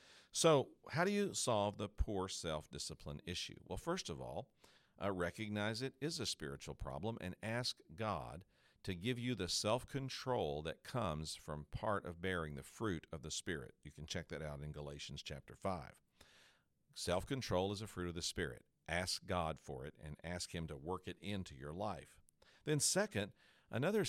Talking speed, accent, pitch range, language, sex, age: 175 wpm, American, 85-130 Hz, English, male, 50-69